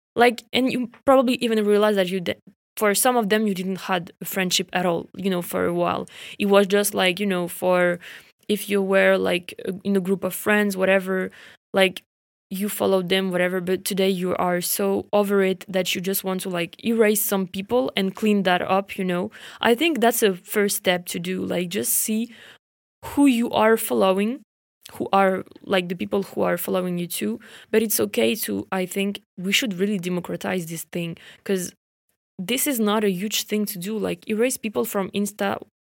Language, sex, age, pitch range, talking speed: English, female, 20-39, 185-210 Hz, 200 wpm